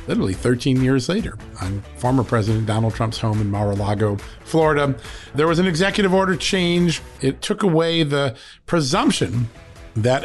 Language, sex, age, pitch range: English, male, 50-69, 120-160 Hz